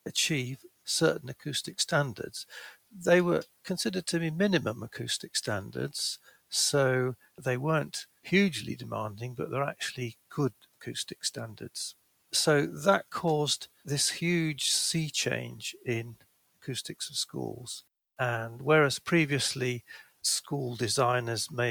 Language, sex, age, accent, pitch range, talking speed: English, male, 50-69, British, 115-145 Hz, 110 wpm